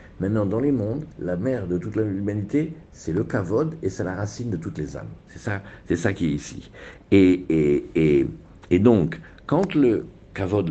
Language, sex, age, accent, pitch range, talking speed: French, male, 50-69, French, 95-145 Hz, 195 wpm